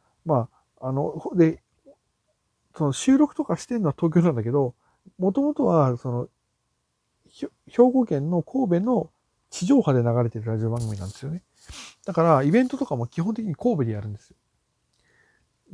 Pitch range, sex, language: 115-165 Hz, male, Japanese